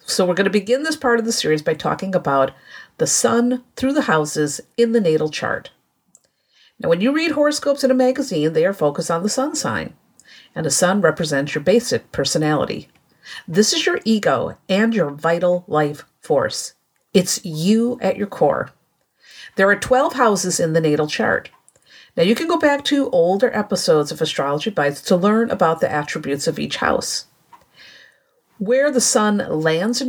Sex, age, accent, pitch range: female, 50-69, American, 160-250 Hz